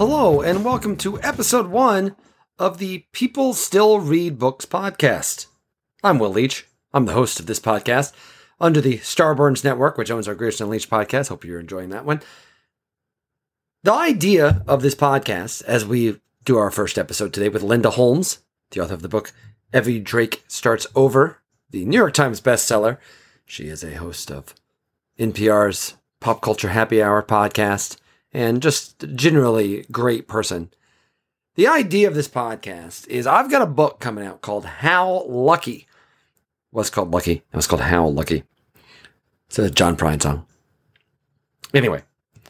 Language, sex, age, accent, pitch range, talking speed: English, male, 40-59, American, 105-155 Hz, 155 wpm